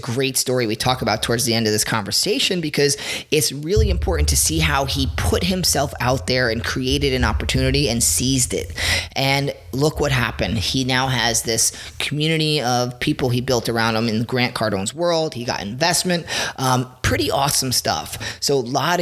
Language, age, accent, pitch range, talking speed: English, 30-49, American, 115-150 Hz, 190 wpm